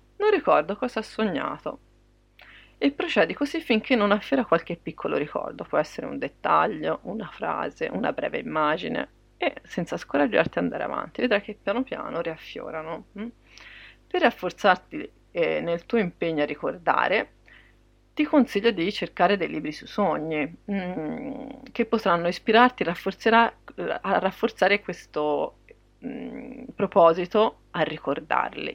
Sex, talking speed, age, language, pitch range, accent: female, 125 wpm, 30-49, Italian, 170-230 Hz, native